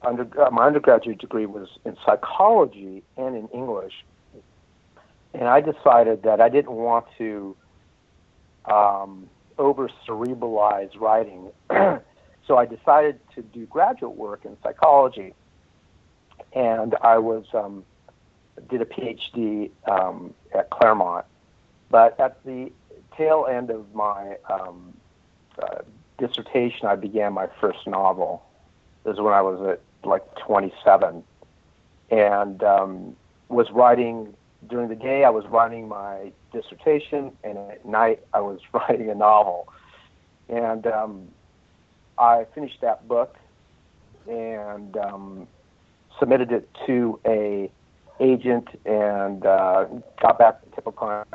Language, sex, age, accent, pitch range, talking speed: English, male, 60-79, American, 100-120 Hz, 120 wpm